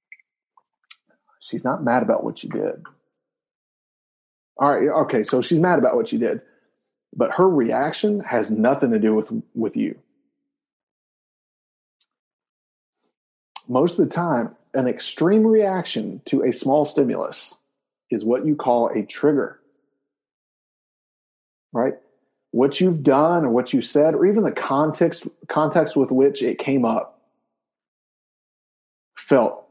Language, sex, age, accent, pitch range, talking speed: English, male, 30-49, American, 125-170 Hz, 125 wpm